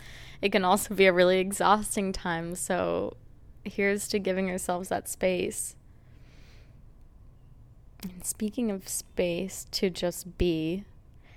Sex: female